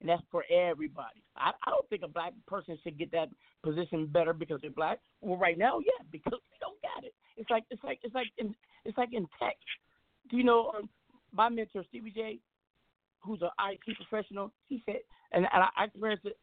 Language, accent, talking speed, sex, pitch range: English, American, 210 wpm, male, 160-205 Hz